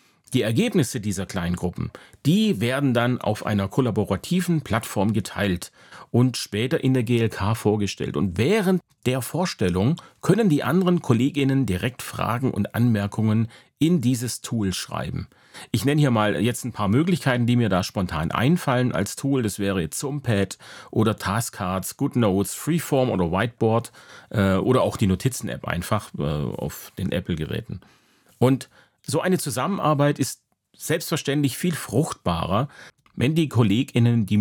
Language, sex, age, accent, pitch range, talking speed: German, male, 40-59, German, 105-140 Hz, 140 wpm